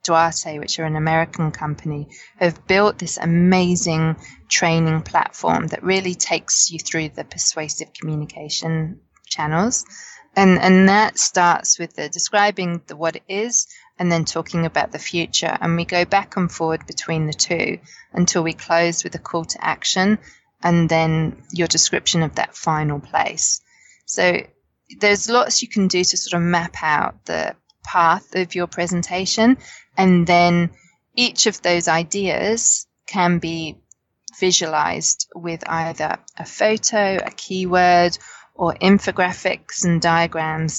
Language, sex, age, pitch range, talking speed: English, female, 20-39, 165-200 Hz, 145 wpm